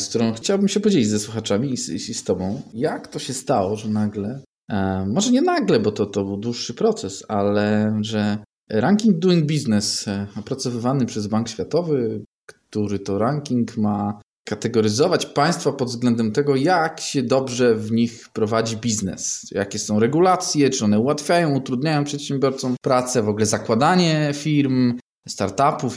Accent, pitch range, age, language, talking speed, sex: native, 105-145 Hz, 20-39, Polish, 155 wpm, male